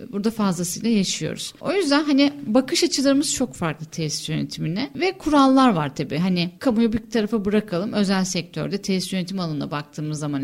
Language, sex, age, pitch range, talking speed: Turkish, female, 10-29, 195-260 Hz, 160 wpm